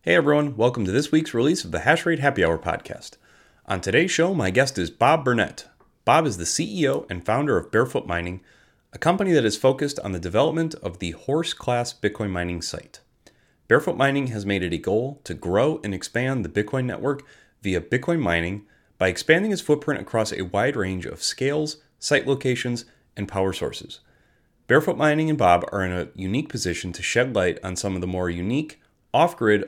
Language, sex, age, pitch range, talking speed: English, male, 30-49, 90-130 Hz, 190 wpm